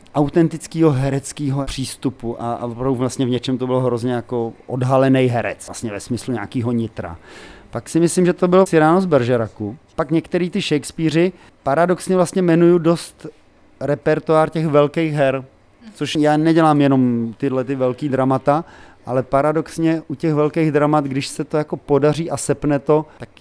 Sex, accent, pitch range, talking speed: male, native, 125-155 Hz, 160 wpm